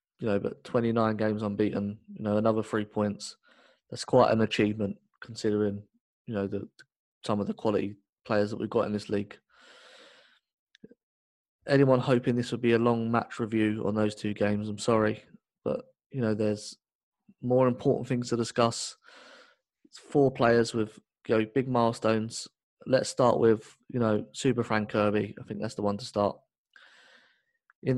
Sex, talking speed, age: male, 165 wpm, 20-39